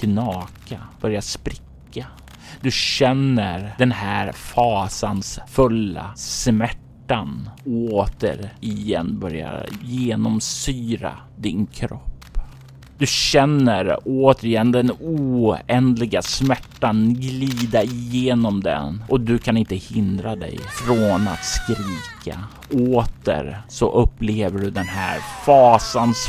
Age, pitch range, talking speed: 30-49, 105-130 Hz, 95 wpm